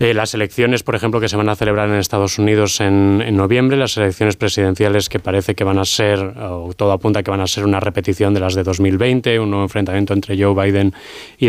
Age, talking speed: 20-39, 240 wpm